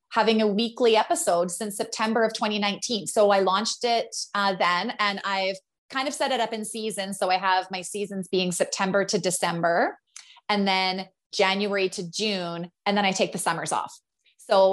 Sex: female